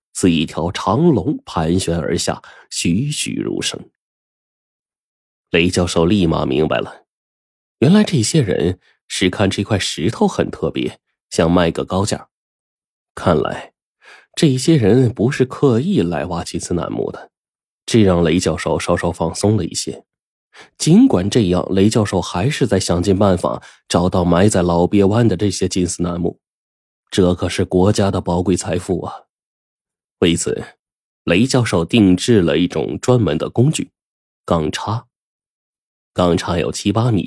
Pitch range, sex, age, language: 85-110 Hz, male, 20-39, Chinese